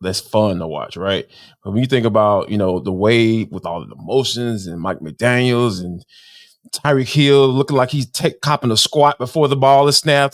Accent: American